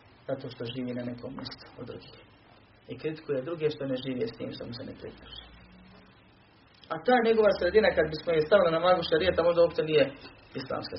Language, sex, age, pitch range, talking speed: Croatian, male, 40-59, 135-200 Hz, 190 wpm